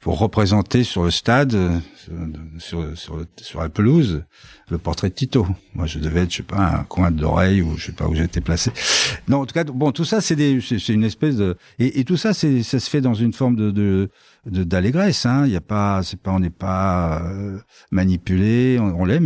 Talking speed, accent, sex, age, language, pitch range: 235 wpm, French, male, 50-69, French, 90-130 Hz